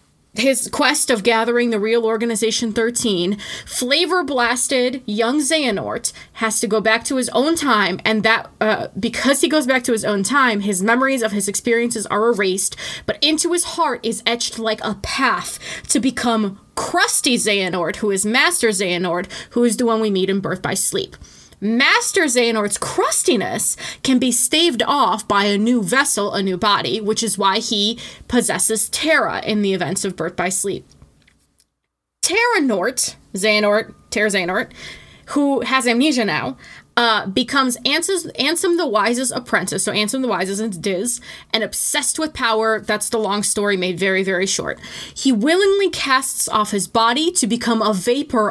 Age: 20-39